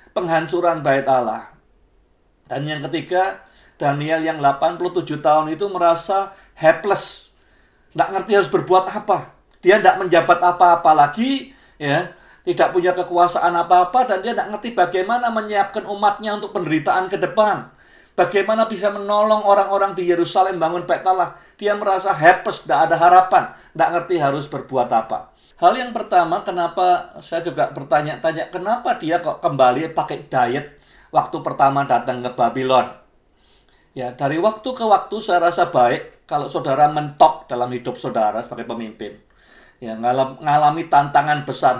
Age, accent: 50-69, native